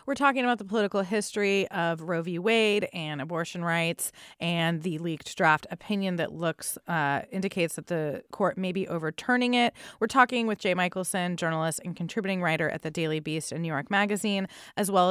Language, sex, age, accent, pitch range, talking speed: English, female, 20-39, American, 175-230 Hz, 190 wpm